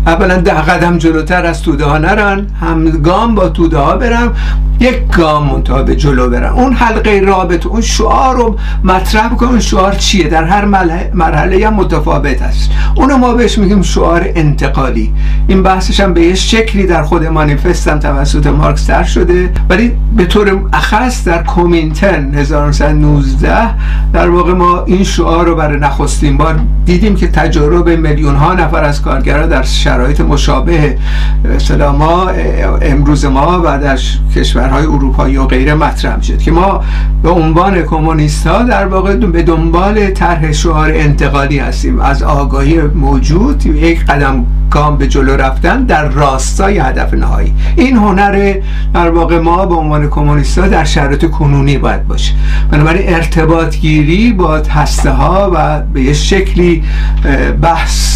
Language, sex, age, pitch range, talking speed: Persian, male, 60-79, 150-190 Hz, 145 wpm